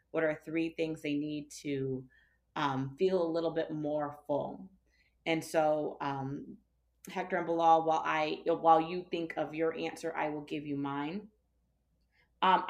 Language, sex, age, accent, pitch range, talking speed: English, female, 30-49, American, 155-185 Hz, 155 wpm